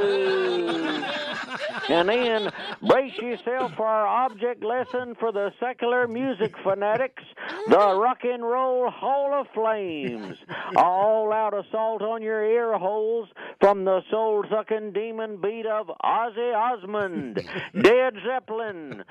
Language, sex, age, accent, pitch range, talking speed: English, male, 60-79, American, 200-250 Hz, 120 wpm